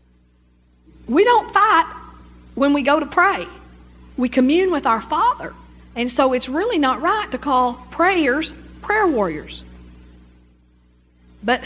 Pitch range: 175-260 Hz